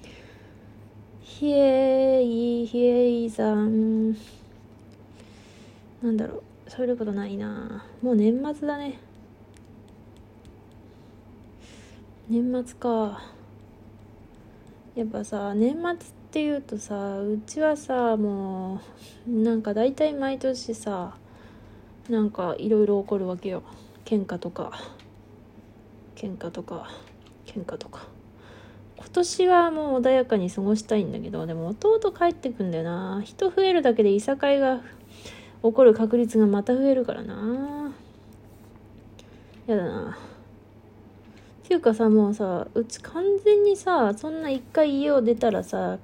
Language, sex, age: Japanese, female, 20-39